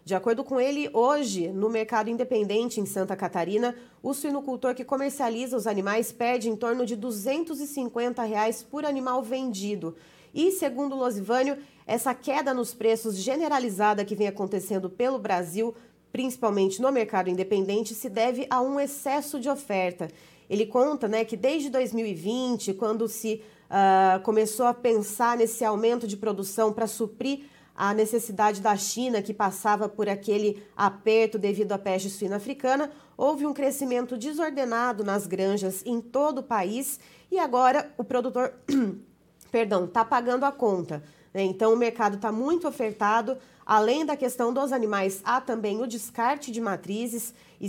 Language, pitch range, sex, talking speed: Portuguese, 205-255 Hz, female, 150 wpm